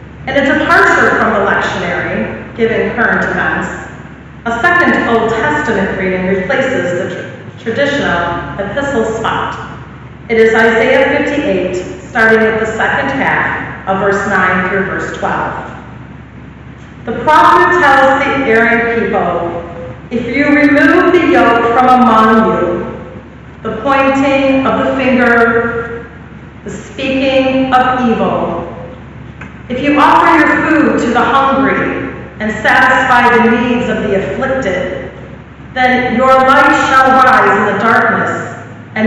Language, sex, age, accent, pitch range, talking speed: English, female, 40-59, American, 210-270 Hz, 125 wpm